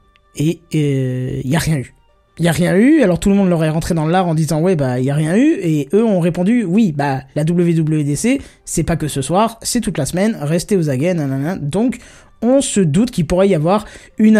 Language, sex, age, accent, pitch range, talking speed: French, male, 20-39, French, 140-195 Hz, 255 wpm